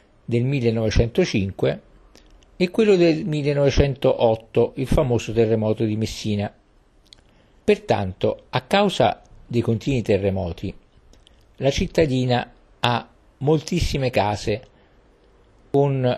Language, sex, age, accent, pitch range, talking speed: Italian, male, 50-69, native, 105-140 Hz, 85 wpm